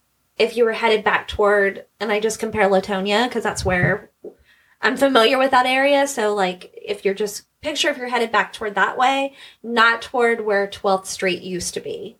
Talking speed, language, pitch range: 195 wpm, English, 205-235 Hz